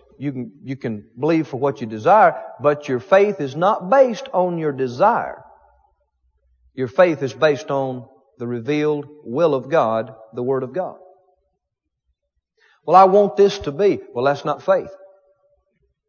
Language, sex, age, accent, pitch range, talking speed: English, male, 40-59, American, 140-200 Hz, 155 wpm